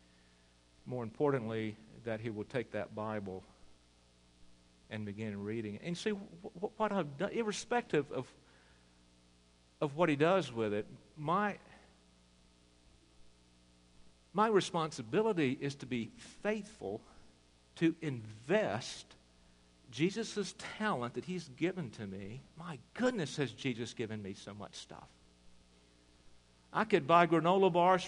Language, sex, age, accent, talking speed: English, male, 50-69, American, 120 wpm